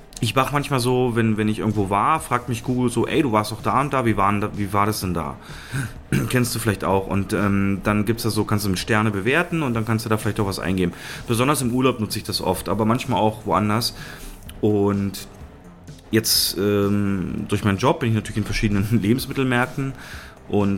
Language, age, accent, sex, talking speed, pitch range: German, 30-49, German, male, 215 wpm, 100-125 Hz